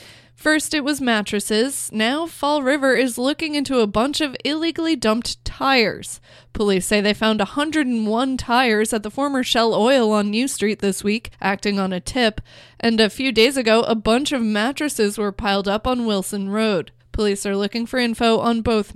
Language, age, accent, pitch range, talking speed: English, 20-39, American, 205-240 Hz, 185 wpm